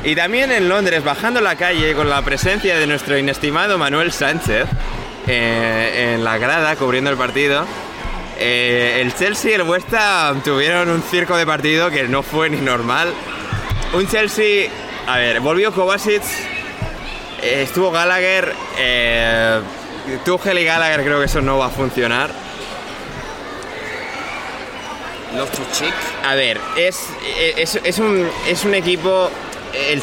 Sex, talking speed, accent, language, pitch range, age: male, 140 wpm, Spanish, Spanish, 135-185 Hz, 20-39